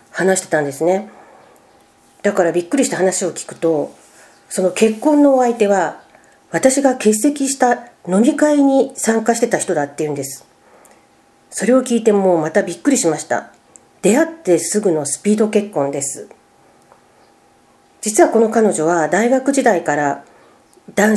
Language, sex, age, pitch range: Japanese, female, 40-59, 170-235 Hz